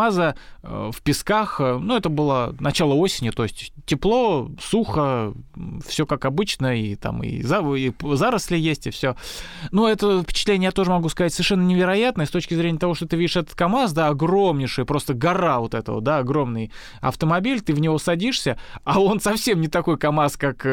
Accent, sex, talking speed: native, male, 180 wpm